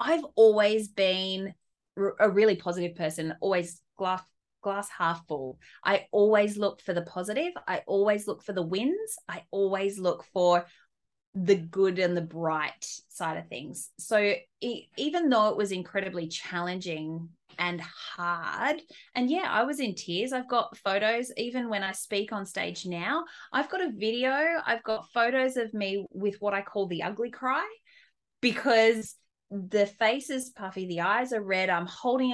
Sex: female